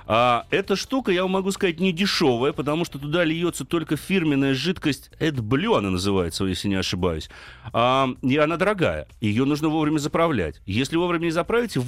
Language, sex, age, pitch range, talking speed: Russian, male, 30-49, 120-155 Hz, 165 wpm